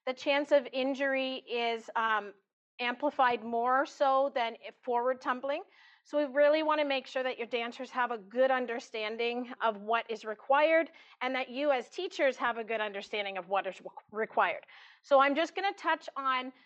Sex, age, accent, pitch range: female, 40-59, American, 240-290 Hz